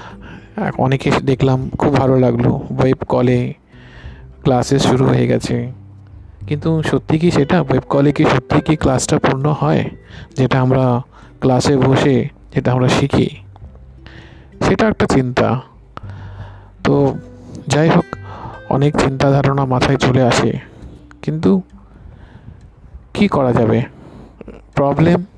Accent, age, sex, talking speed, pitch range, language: native, 50-69, male, 85 wpm, 120-150 Hz, Bengali